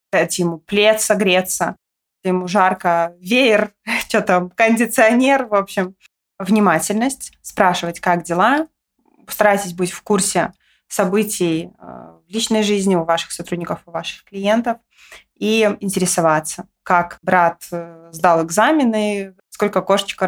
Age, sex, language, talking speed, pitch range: 20-39, female, Russian, 110 wpm, 180-225 Hz